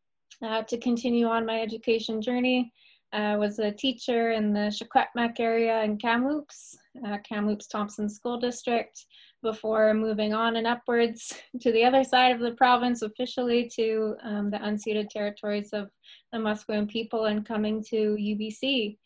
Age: 20-39